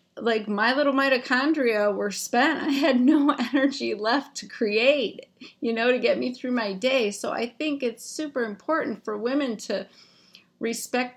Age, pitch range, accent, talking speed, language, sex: 30-49, 210-255 Hz, American, 165 wpm, English, female